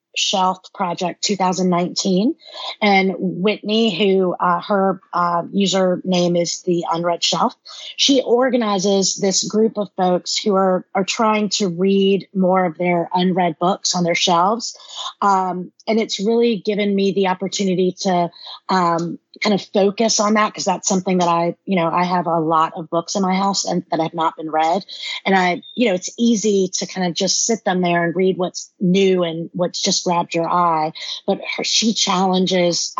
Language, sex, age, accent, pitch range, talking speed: English, female, 30-49, American, 175-205 Hz, 180 wpm